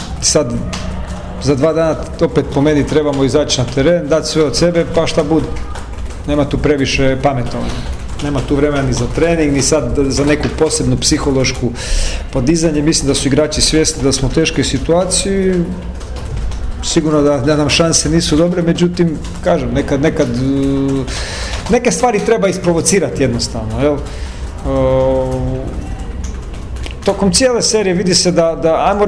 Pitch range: 130-170 Hz